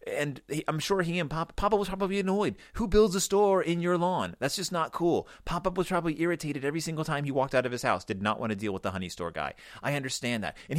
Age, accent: 30-49, American